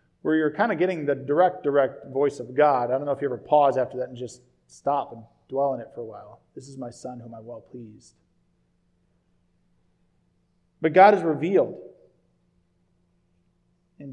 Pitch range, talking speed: 115-175 Hz, 180 wpm